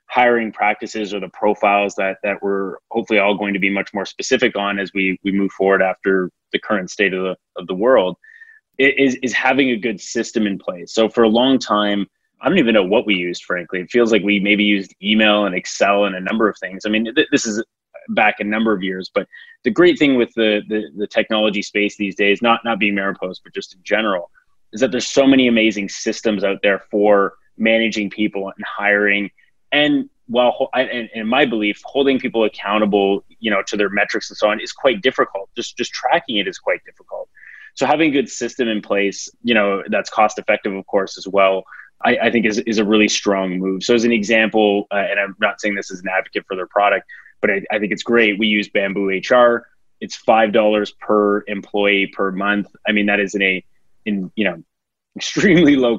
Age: 20-39